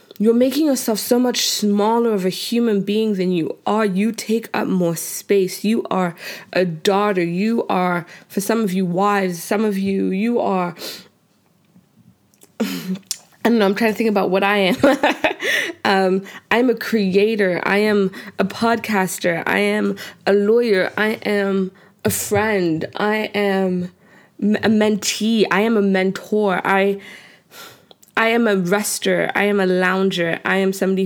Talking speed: 155 wpm